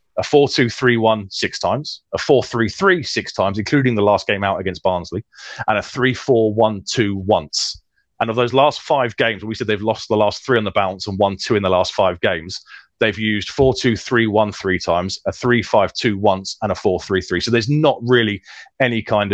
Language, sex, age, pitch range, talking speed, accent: English, male, 30-49, 95-115 Hz, 230 wpm, British